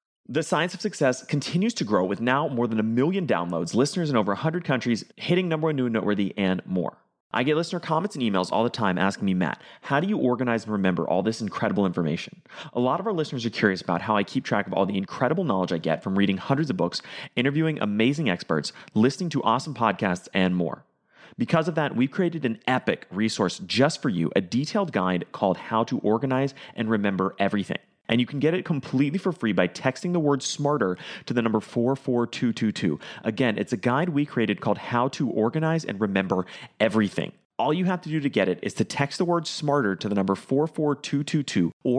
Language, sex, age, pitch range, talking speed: English, male, 30-49, 105-150 Hz, 215 wpm